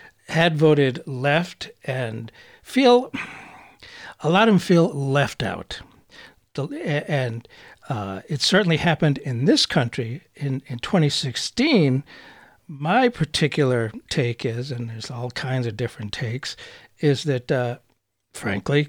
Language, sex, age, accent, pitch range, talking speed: English, male, 60-79, American, 125-155 Hz, 120 wpm